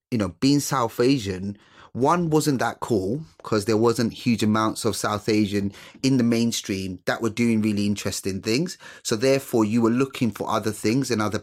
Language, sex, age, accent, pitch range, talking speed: English, male, 30-49, British, 105-125 Hz, 190 wpm